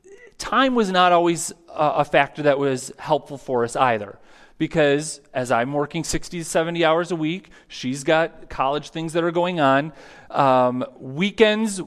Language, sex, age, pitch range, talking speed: English, male, 30-49, 135-175 Hz, 160 wpm